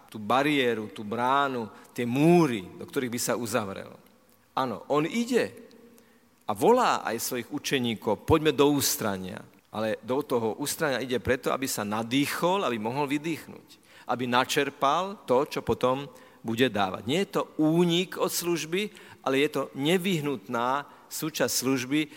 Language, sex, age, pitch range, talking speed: Slovak, male, 50-69, 115-150 Hz, 145 wpm